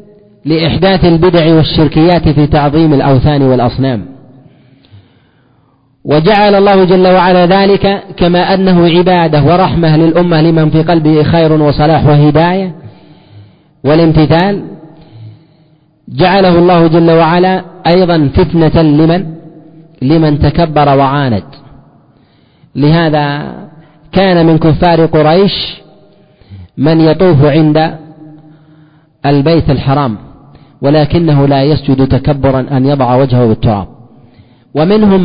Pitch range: 140-170 Hz